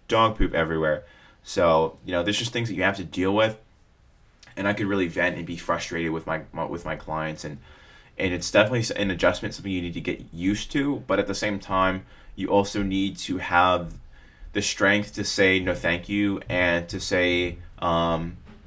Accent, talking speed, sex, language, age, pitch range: American, 205 wpm, male, English, 20-39, 85-100 Hz